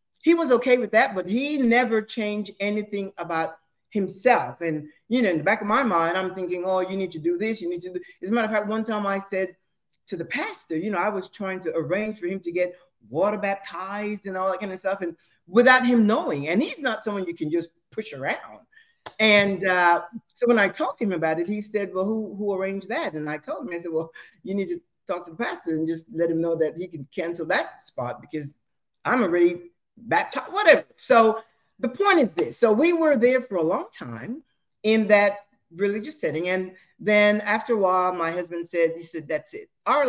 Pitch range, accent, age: 170-220 Hz, American, 60-79